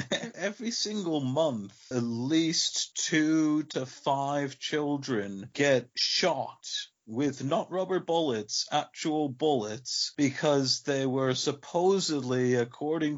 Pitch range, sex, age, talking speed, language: 125-155 Hz, male, 40-59, 100 wpm, English